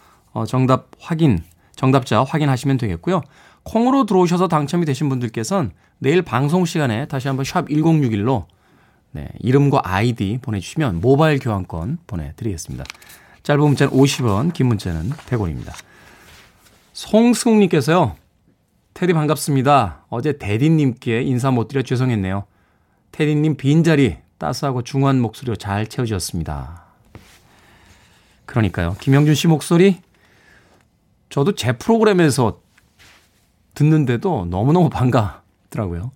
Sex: male